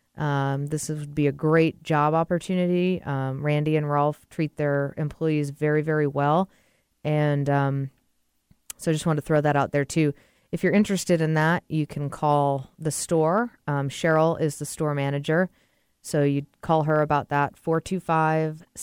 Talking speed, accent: 170 wpm, American